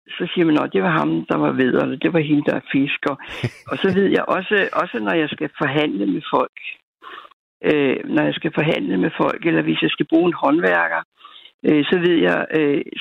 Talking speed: 210 wpm